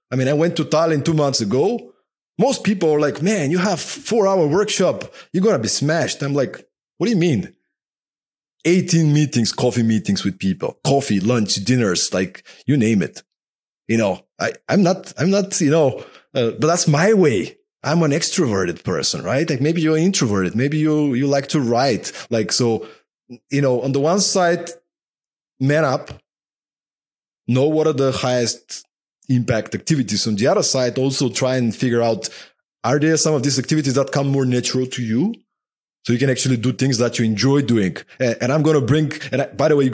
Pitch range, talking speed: 120-160 Hz, 195 wpm